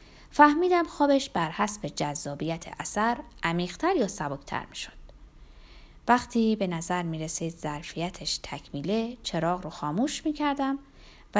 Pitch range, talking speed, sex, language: 175-265 Hz, 115 wpm, female, Persian